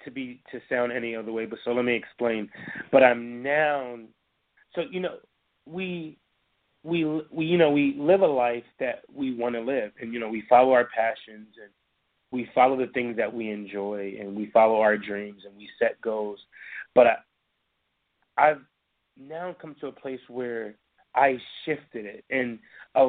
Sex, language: male, English